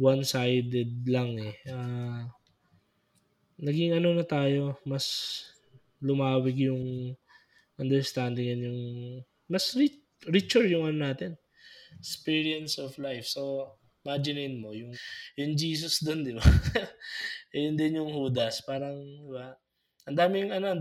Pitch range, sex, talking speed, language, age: 120-150 Hz, male, 115 wpm, Filipino, 20-39